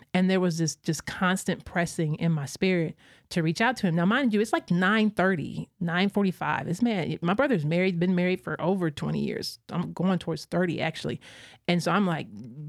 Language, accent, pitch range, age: English, American, 155-190 Hz, 30-49